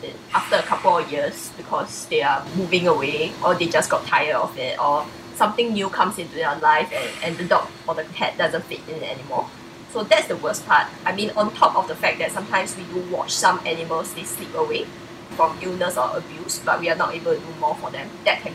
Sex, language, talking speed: female, English, 240 wpm